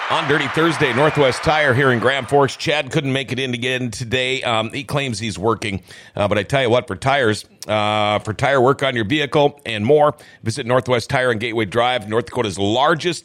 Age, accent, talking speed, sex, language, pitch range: 50-69, American, 215 wpm, male, English, 115-155 Hz